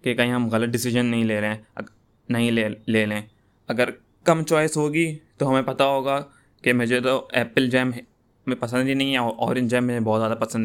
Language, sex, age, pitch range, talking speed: Urdu, male, 20-39, 110-125 Hz, 210 wpm